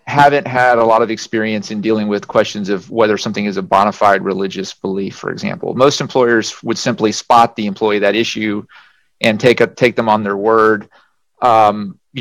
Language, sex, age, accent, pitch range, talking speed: English, male, 30-49, American, 105-130 Hz, 195 wpm